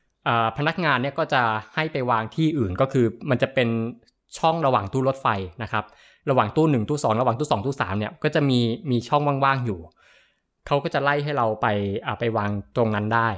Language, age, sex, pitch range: Thai, 20-39, male, 110-135 Hz